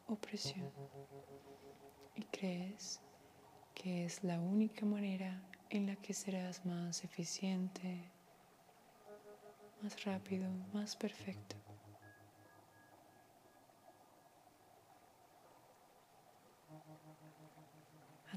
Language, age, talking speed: Spanish, 20-39, 60 wpm